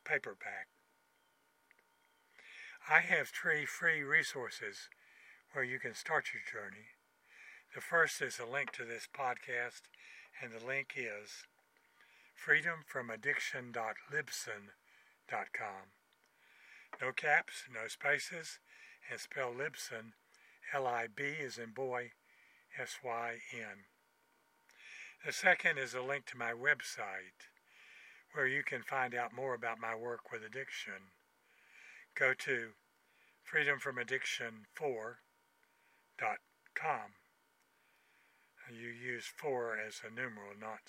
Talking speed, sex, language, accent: 95 wpm, male, English, American